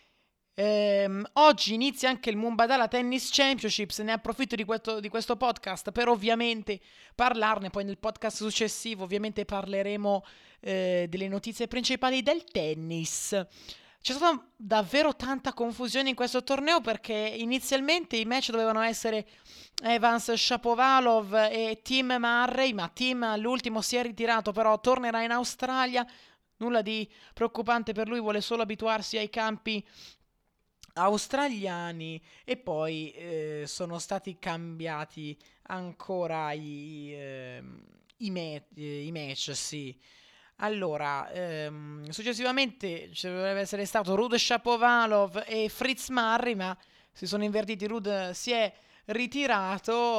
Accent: native